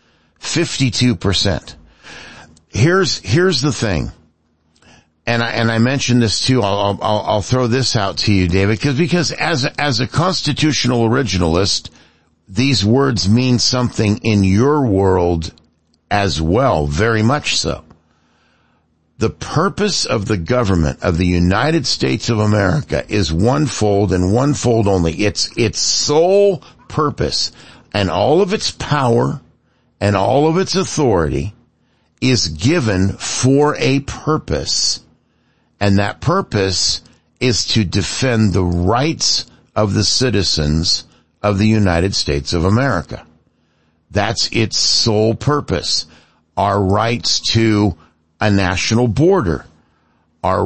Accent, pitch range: American, 90-125 Hz